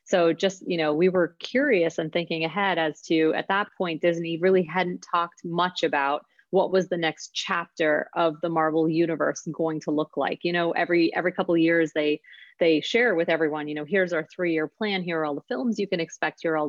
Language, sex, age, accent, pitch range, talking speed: English, female, 30-49, American, 160-195 Hz, 225 wpm